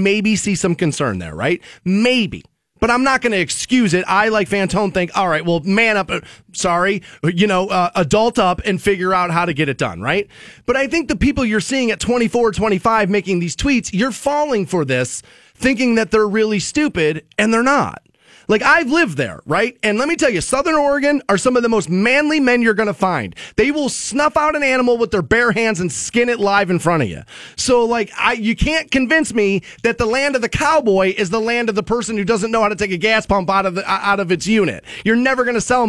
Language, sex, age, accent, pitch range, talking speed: English, male, 30-49, American, 175-230 Hz, 240 wpm